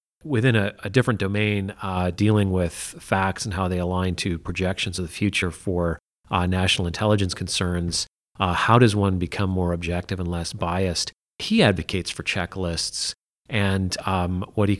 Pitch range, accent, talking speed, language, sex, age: 90-105 Hz, American, 165 wpm, English, male, 30-49